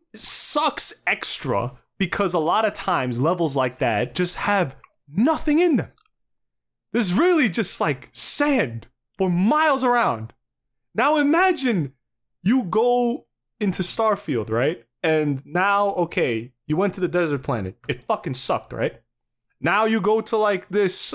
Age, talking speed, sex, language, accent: 20-39, 140 wpm, male, English, American